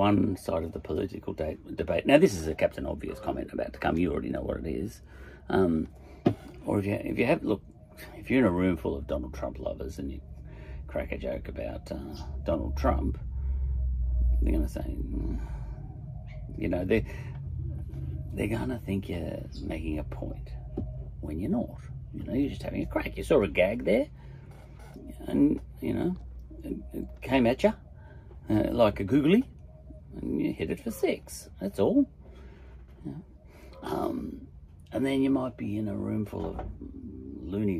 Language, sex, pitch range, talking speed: English, male, 70-100 Hz, 180 wpm